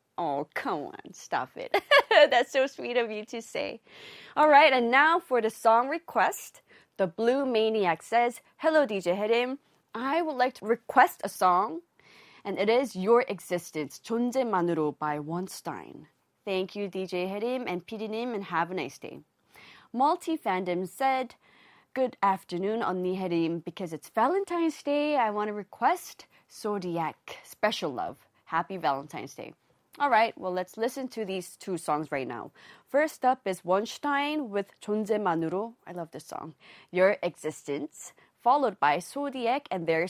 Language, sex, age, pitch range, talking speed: English, female, 20-39, 185-265 Hz, 155 wpm